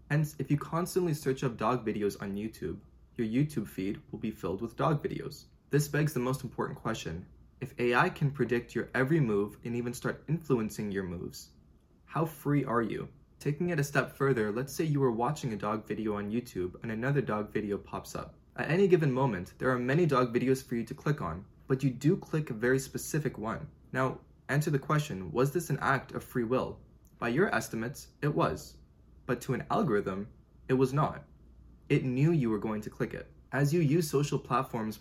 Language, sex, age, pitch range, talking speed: English, male, 20-39, 110-145 Hz, 205 wpm